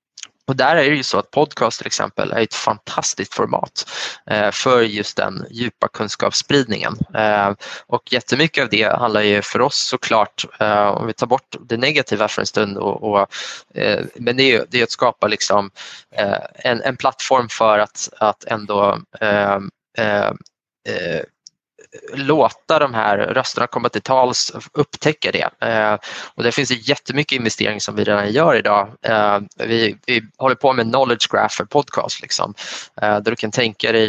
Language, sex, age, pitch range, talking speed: Swedish, male, 20-39, 105-120 Hz, 180 wpm